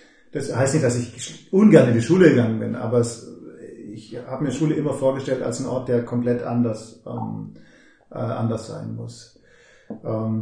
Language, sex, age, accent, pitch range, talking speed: German, male, 40-59, German, 120-150 Hz, 175 wpm